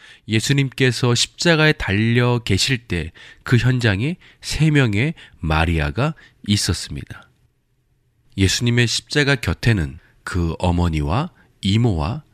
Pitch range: 85-125 Hz